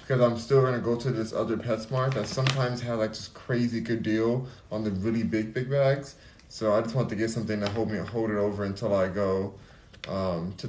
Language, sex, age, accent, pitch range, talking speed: English, male, 20-39, American, 105-125 Hz, 235 wpm